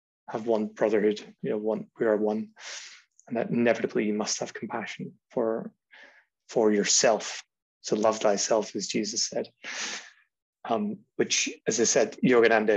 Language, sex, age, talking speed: English, male, 20-39, 145 wpm